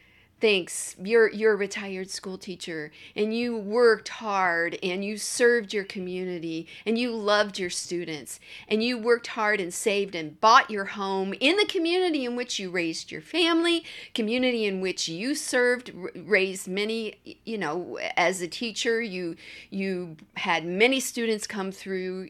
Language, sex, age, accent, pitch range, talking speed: English, female, 50-69, American, 180-260 Hz, 160 wpm